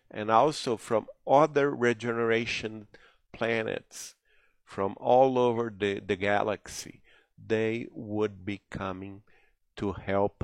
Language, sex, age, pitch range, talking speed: English, male, 50-69, 100-110 Hz, 105 wpm